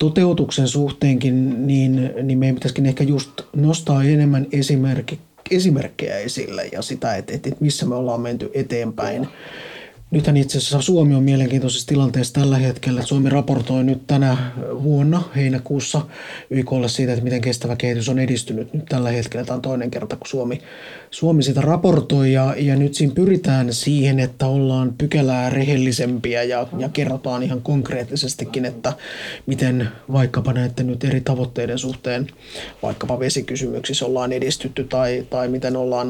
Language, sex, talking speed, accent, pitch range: Finnish, male, 140 wpm, native, 125-140 Hz